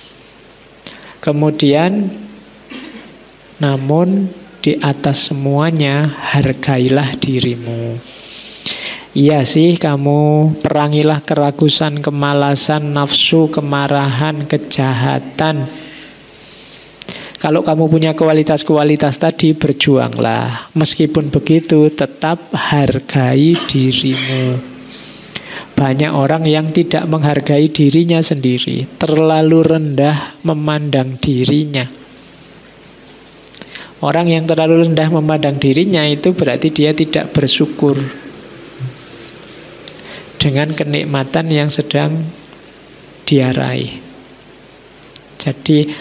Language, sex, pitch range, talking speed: Indonesian, male, 140-160 Hz, 70 wpm